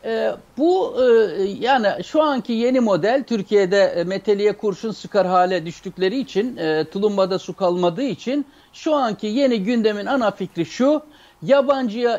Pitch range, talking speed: 210-300 Hz, 140 wpm